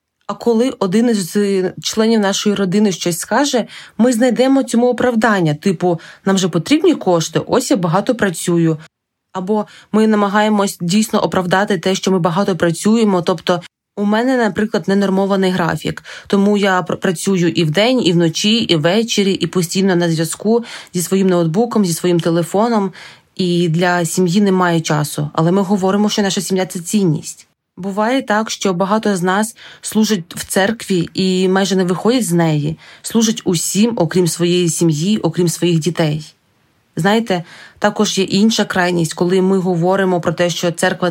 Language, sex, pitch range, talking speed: Ukrainian, female, 175-210 Hz, 155 wpm